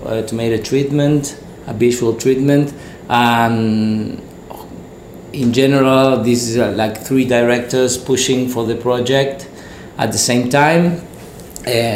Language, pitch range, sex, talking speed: English, 110-135 Hz, male, 130 wpm